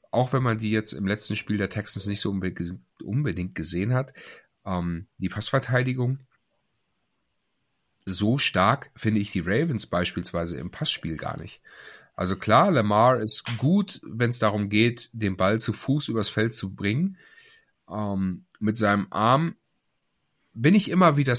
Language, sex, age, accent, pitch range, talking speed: German, male, 30-49, German, 100-130 Hz, 150 wpm